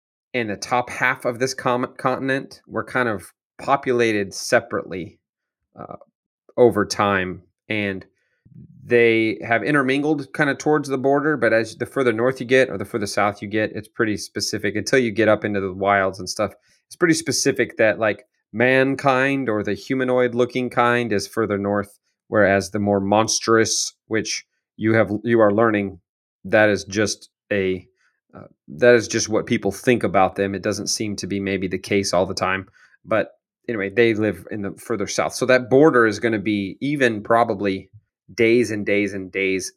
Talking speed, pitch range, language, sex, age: 180 wpm, 100-125 Hz, English, male, 30-49